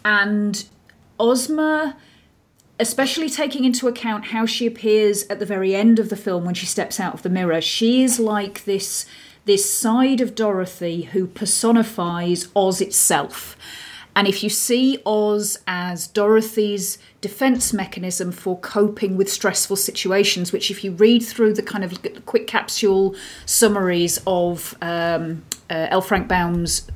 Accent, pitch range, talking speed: British, 185-215 Hz, 145 wpm